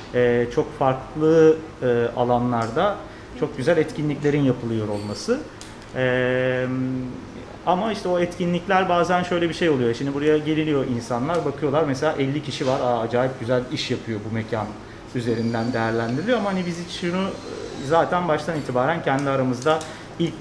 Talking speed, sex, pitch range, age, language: 140 wpm, male, 115-150 Hz, 40-59, Turkish